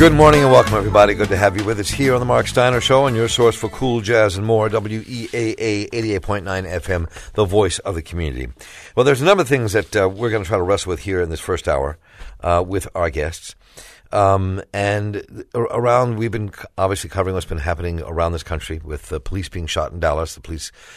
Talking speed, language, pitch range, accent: 225 wpm, English, 85-105 Hz, American